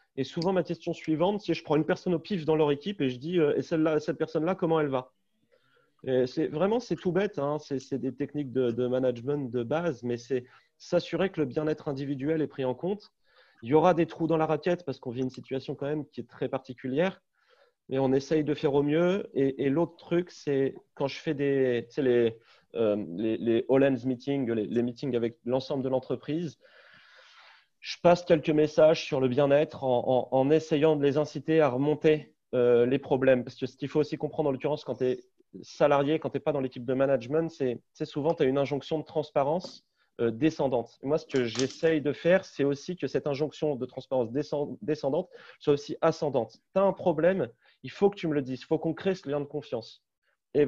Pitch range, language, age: 130-160 Hz, French, 30-49